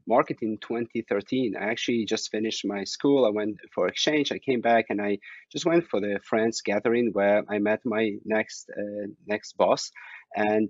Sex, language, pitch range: male, English, 105-115 Hz